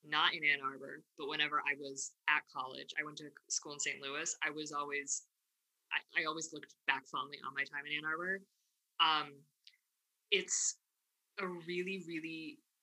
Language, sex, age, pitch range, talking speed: German, female, 20-39, 155-200 Hz, 175 wpm